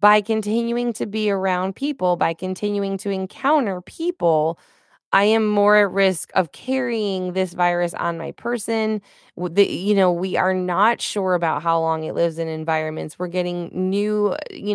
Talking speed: 165 wpm